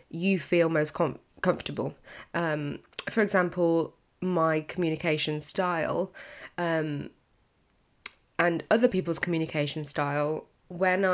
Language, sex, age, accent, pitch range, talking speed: English, female, 20-39, British, 165-210 Hz, 90 wpm